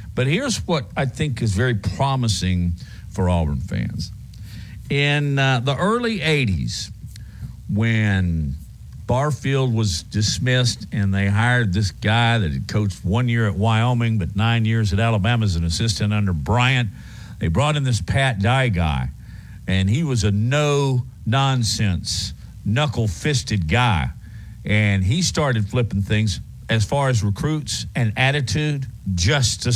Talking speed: 140 wpm